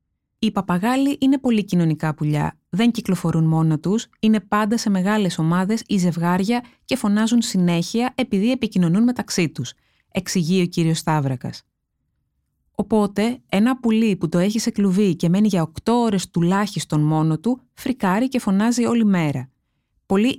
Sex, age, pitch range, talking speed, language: female, 20-39, 170-230 Hz, 145 wpm, Greek